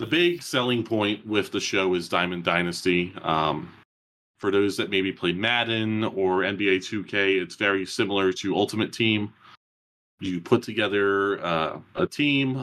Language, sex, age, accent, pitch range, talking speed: English, male, 30-49, American, 85-110 Hz, 150 wpm